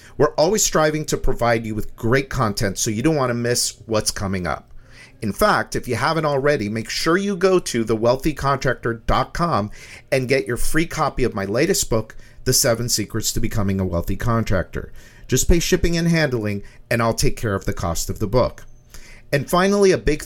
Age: 50-69